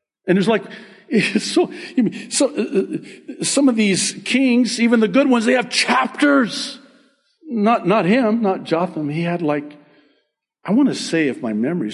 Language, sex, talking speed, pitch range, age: English, male, 165 wpm, 165-265 Hz, 50-69